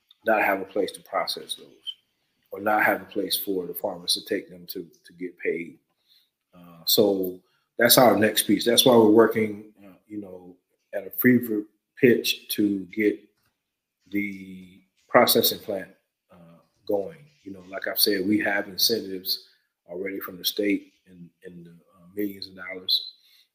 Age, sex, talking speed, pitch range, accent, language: 30-49, male, 170 wpm, 90-110 Hz, American, English